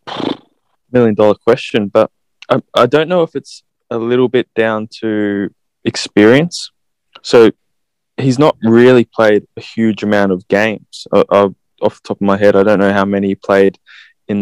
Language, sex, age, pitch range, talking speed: English, male, 20-39, 100-115 Hz, 175 wpm